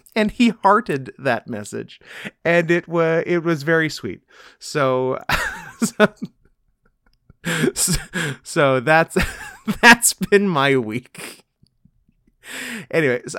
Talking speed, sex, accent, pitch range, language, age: 95 wpm, male, American, 115-170 Hz, English, 30-49